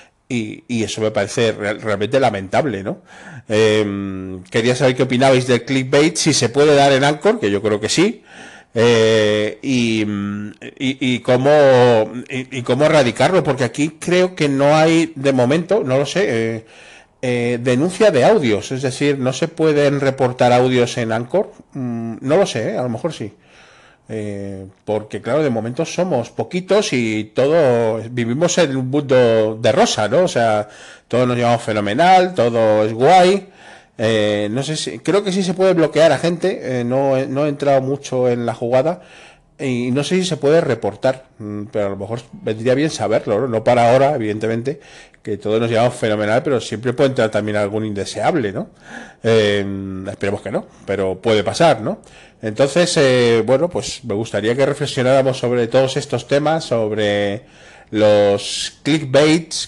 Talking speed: 170 wpm